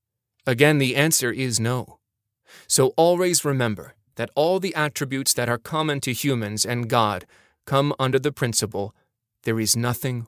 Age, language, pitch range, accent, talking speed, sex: 30-49, English, 110-140 Hz, American, 150 wpm, male